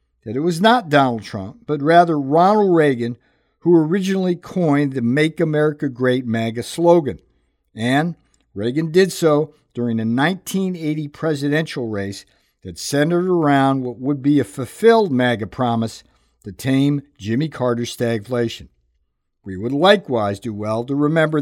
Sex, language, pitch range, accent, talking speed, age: male, English, 115-160 Hz, American, 140 wpm, 50-69